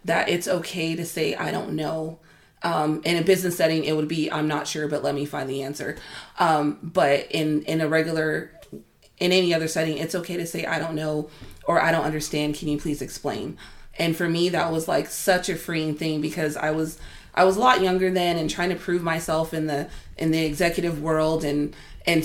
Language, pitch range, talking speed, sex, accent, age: English, 155-175 Hz, 220 wpm, female, American, 30-49